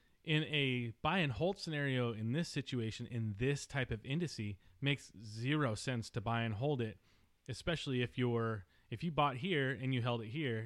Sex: male